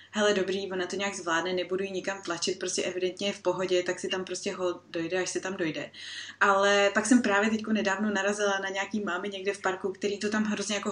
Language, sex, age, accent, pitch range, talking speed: Czech, female, 20-39, native, 200-230 Hz, 235 wpm